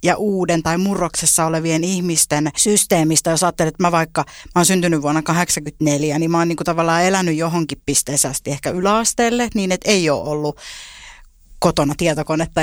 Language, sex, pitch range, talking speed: Finnish, female, 160-195 Hz, 160 wpm